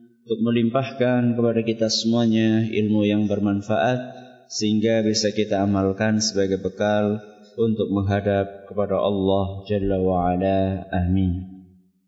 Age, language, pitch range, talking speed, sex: 20-39, Malay, 100-115 Hz, 105 wpm, male